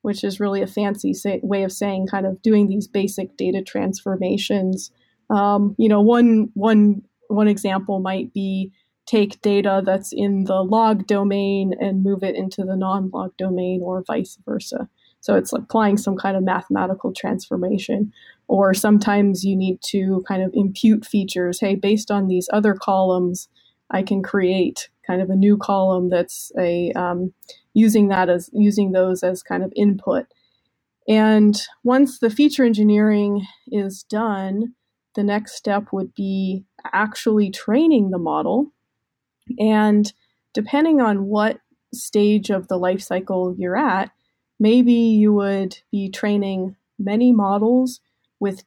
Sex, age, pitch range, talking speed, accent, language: female, 20-39, 190-215 Hz, 150 wpm, American, English